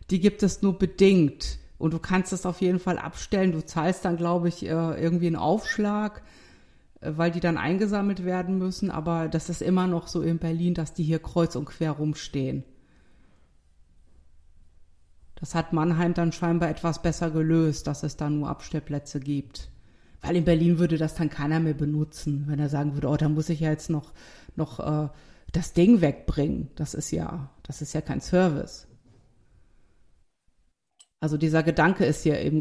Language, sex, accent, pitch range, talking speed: German, female, German, 150-195 Hz, 175 wpm